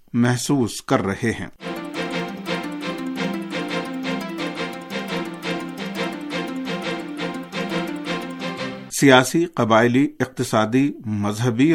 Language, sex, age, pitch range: Urdu, male, 50-69, 110-140 Hz